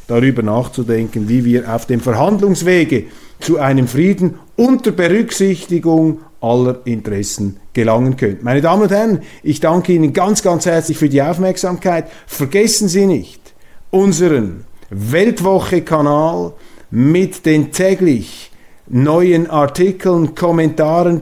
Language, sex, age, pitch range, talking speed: German, male, 50-69, 125-165 Hz, 115 wpm